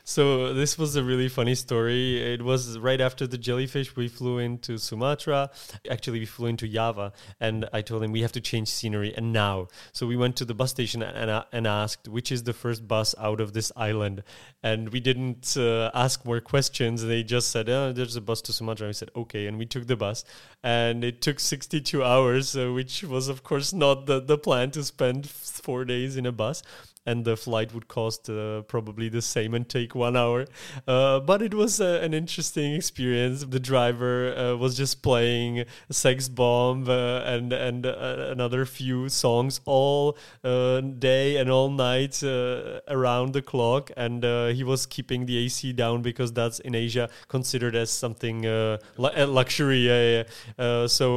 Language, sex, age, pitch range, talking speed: Czech, male, 20-39, 115-130 Hz, 195 wpm